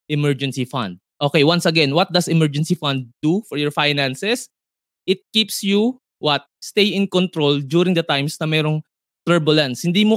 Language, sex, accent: Filipino, male, native